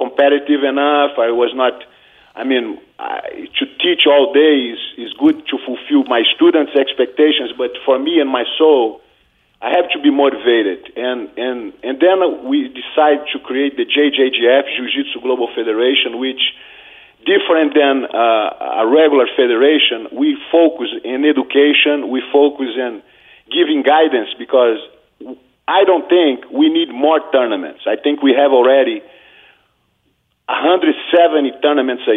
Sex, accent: male, Brazilian